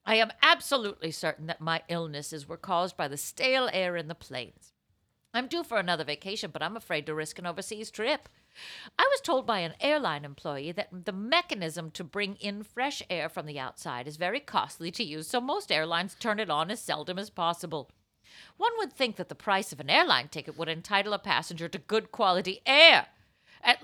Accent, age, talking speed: American, 50-69, 205 wpm